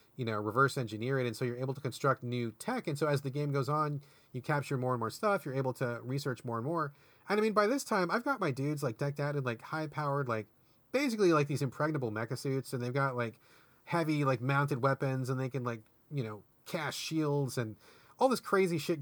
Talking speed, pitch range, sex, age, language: 245 wpm, 125-170 Hz, male, 30-49, English